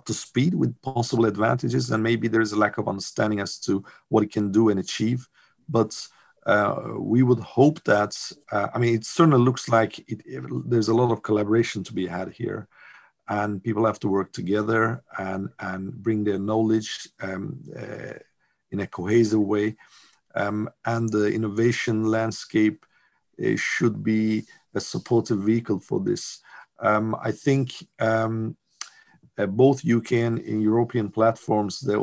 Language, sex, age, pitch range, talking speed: English, male, 50-69, 105-125 Hz, 160 wpm